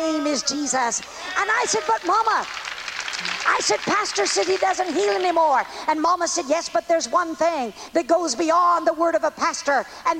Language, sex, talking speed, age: English, female, 195 wpm, 50-69